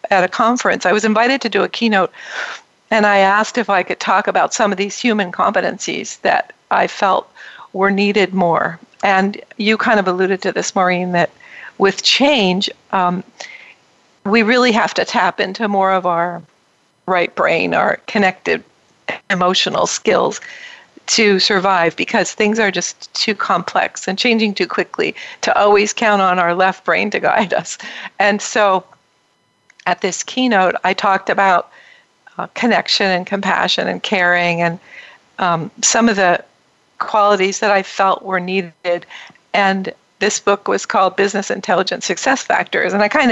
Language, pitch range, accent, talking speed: English, 185-215 Hz, American, 160 wpm